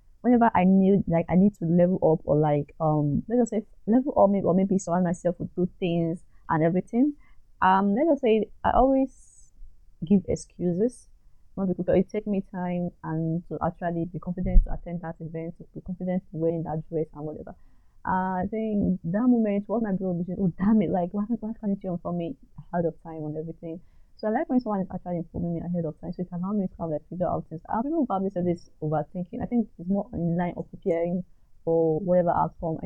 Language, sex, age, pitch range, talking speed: English, female, 20-39, 165-210 Hz, 225 wpm